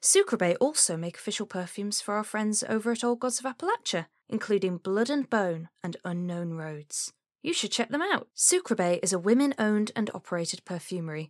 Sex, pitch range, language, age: female, 170-245 Hz, English, 10-29